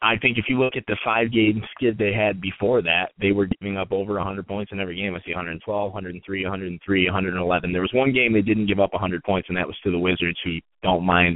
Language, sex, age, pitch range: English, male, 30-49, 100-125 Hz